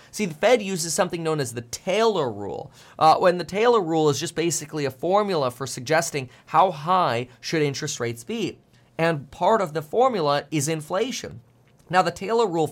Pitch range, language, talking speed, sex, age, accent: 125-170 Hz, English, 185 wpm, male, 30-49, American